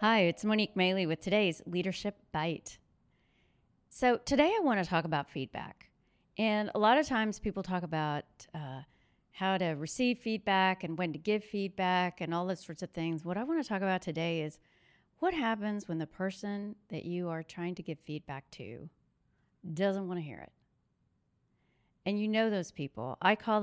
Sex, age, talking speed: female, 40-59, 185 wpm